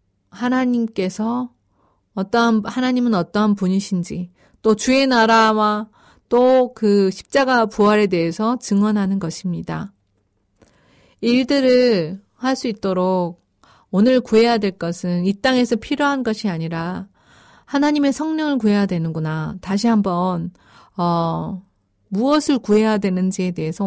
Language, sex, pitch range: Korean, female, 175-240 Hz